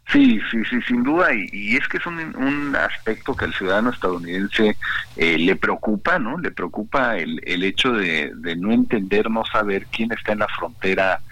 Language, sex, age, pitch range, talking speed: Spanish, male, 50-69, 95-130 Hz, 195 wpm